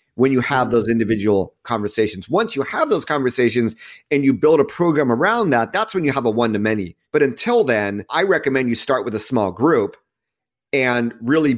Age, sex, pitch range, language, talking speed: 30-49, male, 115-150 Hz, English, 200 wpm